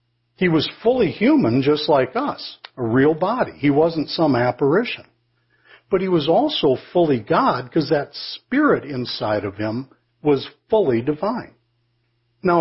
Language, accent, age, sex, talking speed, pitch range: English, American, 60-79, male, 145 wpm, 120-170 Hz